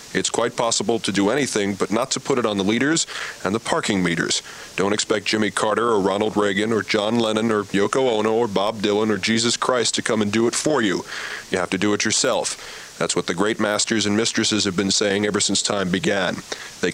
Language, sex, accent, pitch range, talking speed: English, male, American, 100-115 Hz, 230 wpm